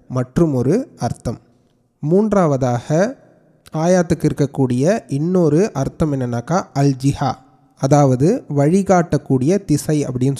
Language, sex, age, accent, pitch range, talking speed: Tamil, male, 30-49, native, 130-165 Hz, 80 wpm